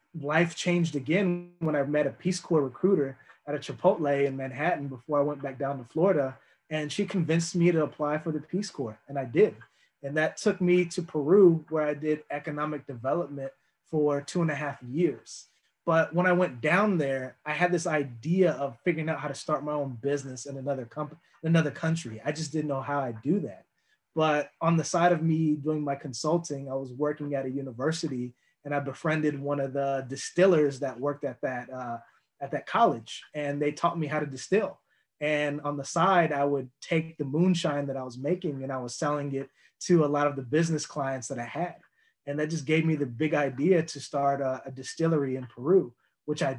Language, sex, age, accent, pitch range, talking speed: English, male, 20-39, American, 135-160 Hz, 215 wpm